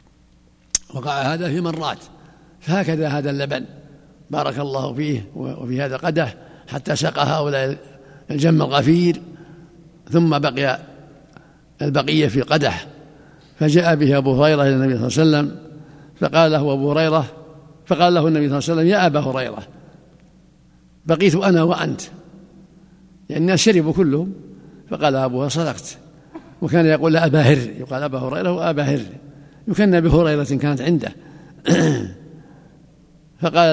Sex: male